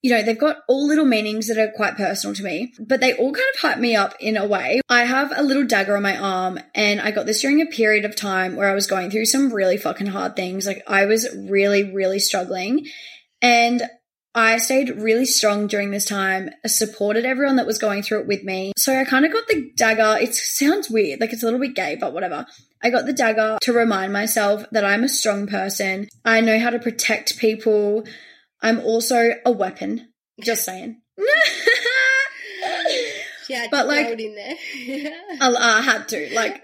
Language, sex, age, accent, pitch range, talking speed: English, female, 20-39, Australian, 205-260 Hz, 200 wpm